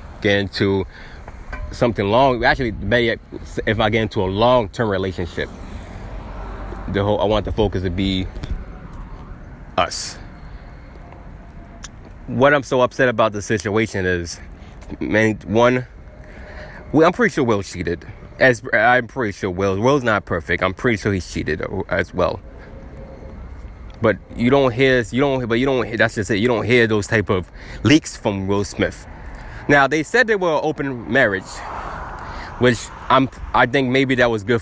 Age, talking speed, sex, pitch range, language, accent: 20-39, 155 wpm, male, 90-120 Hz, English, American